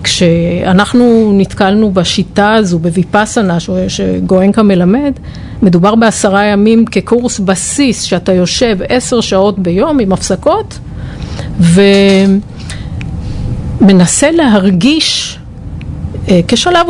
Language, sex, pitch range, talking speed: Hebrew, female, 180-230 Hz, 80 wpm